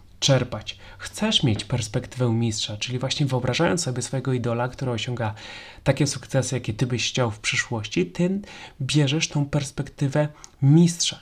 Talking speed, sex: 140 wpm, male